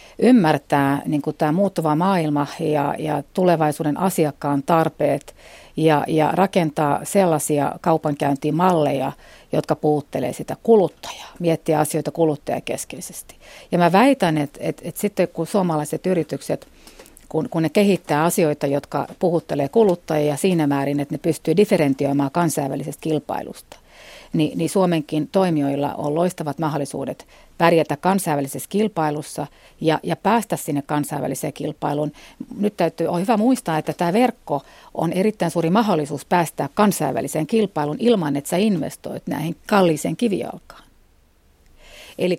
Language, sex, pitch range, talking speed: Finnish, female, 150-180 Hz, 120 wpm